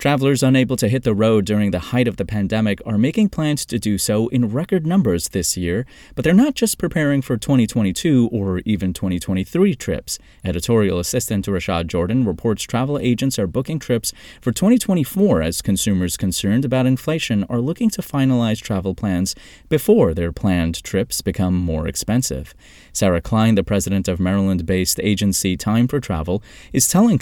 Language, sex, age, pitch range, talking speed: English, male, 30-49, 95-130 Hz, 170 wpm